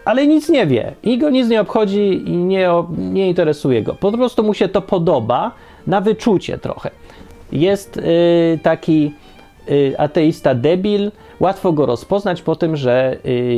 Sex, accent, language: male, native, Polish